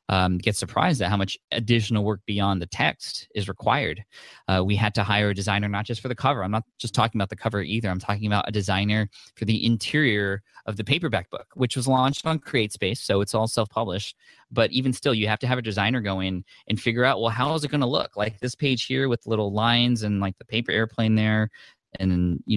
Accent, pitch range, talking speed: American, 100-120 Hz, 240 wpm